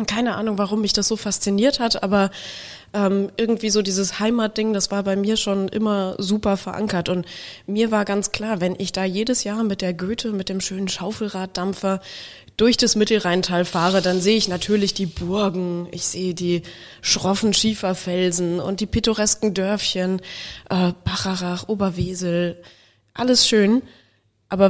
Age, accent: 20-39, German